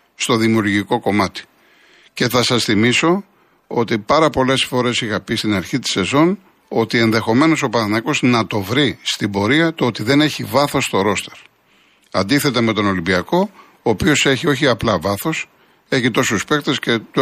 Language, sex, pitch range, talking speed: Greek, male, 115-150 Hz, 165 wpm